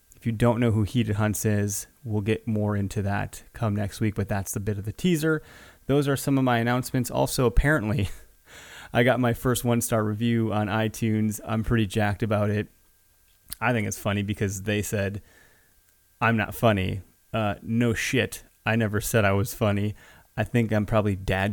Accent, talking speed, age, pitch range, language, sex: American, 190 wpm, 20-39, 100-115 Hz, English, male